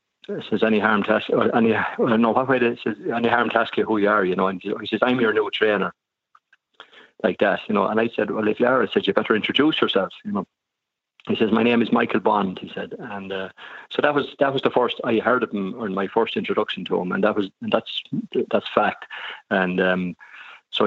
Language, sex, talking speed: English, male, 240 wpm